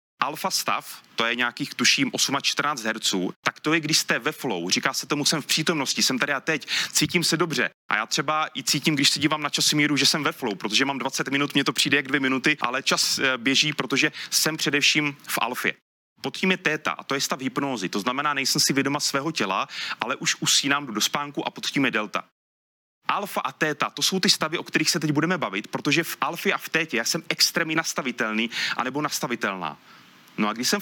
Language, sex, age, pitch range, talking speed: Czech, male, 30-49, 115-155 Hz, 220 wpm